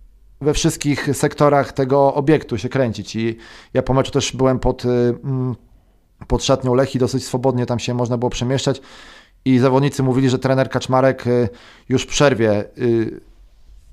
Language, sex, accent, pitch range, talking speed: Polish, male, native, 115-130 Hz, 145 wpm